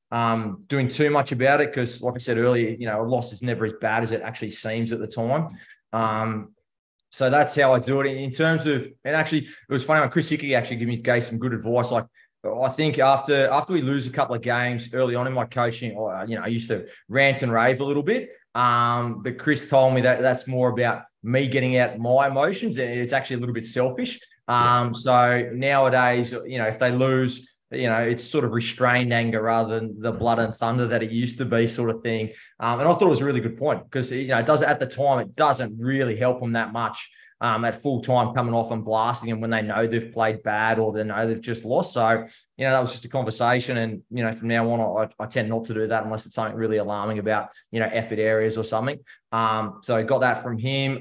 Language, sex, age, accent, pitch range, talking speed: English, male, 20-39, Australian, 115-130 Hz, 250 wpm